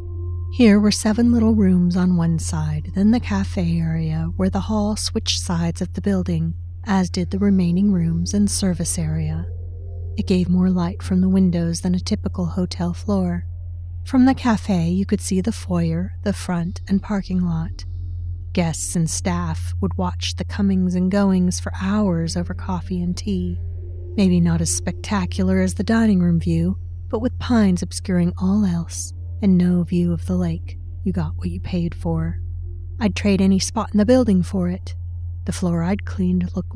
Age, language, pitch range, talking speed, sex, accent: 40-59, English, 85-100 Hz, 180 wpm, female, American